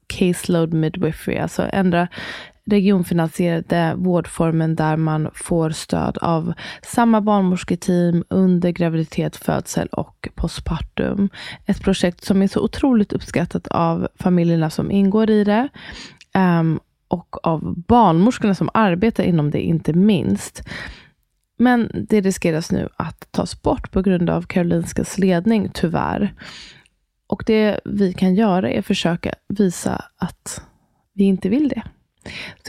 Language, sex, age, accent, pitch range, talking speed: Swedish, female, 20-39, native, 165-195 Hz, 125 wpm